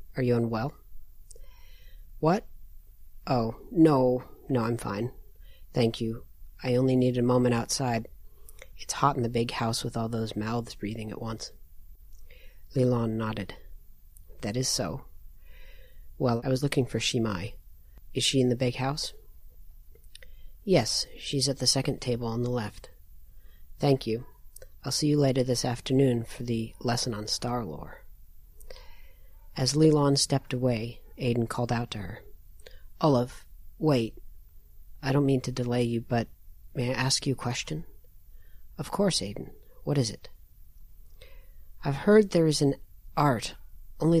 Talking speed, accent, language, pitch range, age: 145 wpm, American, English, 100-130 Hz, 40-59